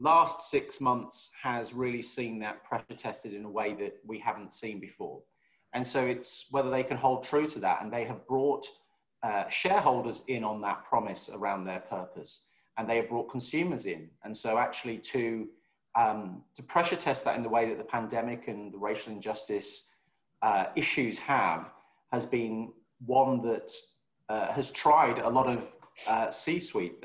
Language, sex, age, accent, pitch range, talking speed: English, male, 30-49, British, 110-130 Hz, 175 wpm